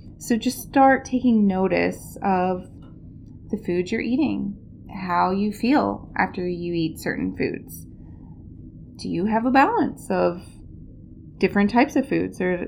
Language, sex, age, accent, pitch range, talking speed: English, female, 20-39, American, 185-240 Hz, 135 wpm